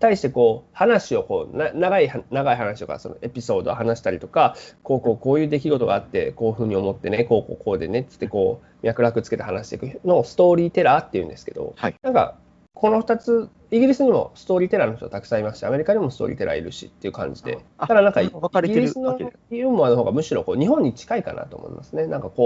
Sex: male